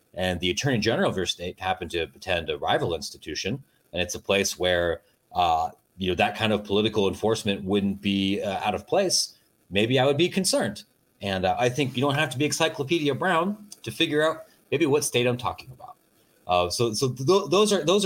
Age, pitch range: 30-49, 105-145 Hz